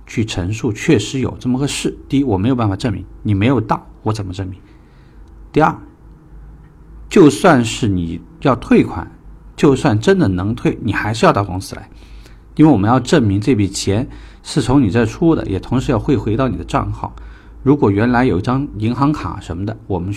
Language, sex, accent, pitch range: Chinese, male, native, 85-125 Hz